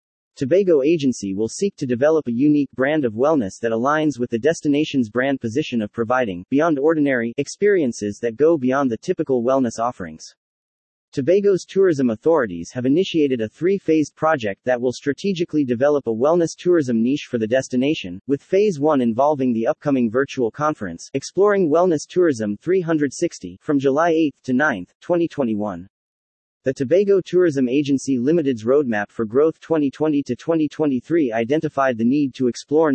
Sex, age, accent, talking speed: male, 30-49, American, 150 wpm